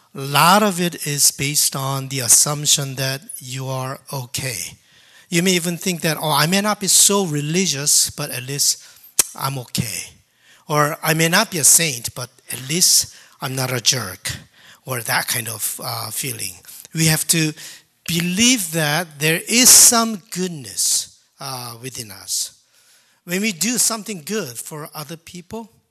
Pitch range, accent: 135-190 Hz, Japanese